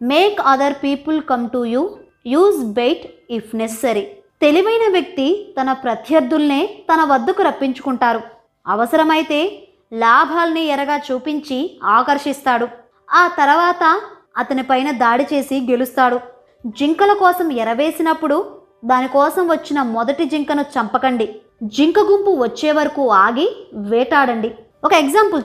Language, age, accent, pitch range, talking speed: Telugu, 20-39, native, 245-320 Hz, 105 wpm